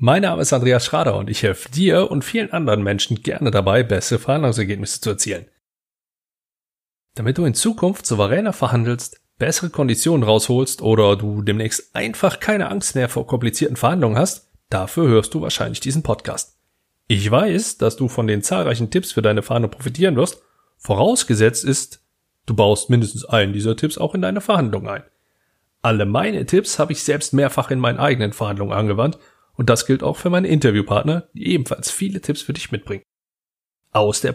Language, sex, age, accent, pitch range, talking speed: German, male, 30-49, German, 110-150 Hz, 175 wpm